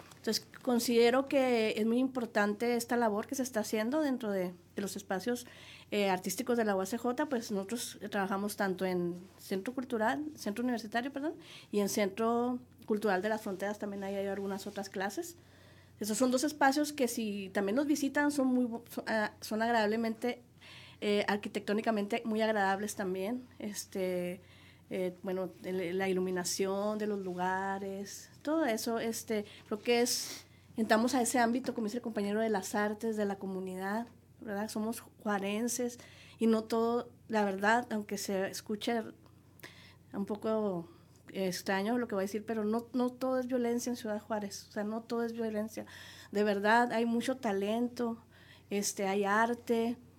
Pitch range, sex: 200-240 Hz, female